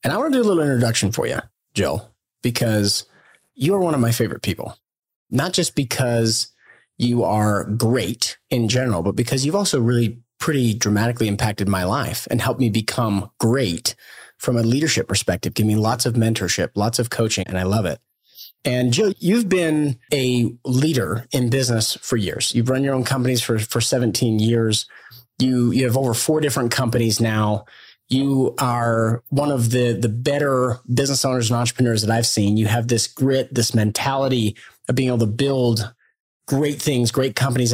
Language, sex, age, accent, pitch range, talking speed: English, male, 30-49, American, 110-135 Hz, 180 wpm